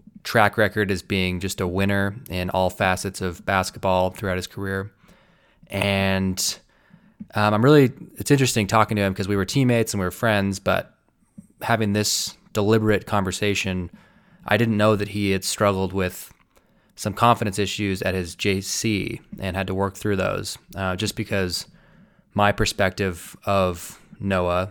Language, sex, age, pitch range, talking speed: English, male, 20-39, 95-105 Hz, 155 wpm